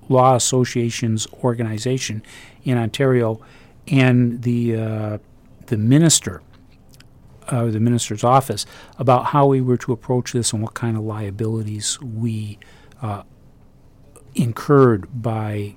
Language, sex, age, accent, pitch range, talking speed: English, male, 40-59, American, 110-130 Hz, 115 wpm